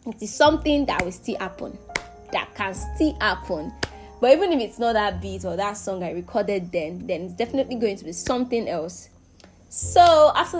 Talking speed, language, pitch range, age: 190 wpm, English, 190-260 Hz, 20-39